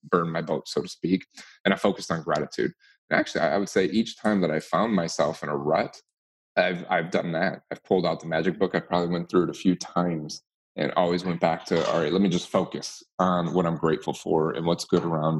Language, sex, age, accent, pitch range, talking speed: English, male, 30-49, American, 80-95 Hz, 245 wpm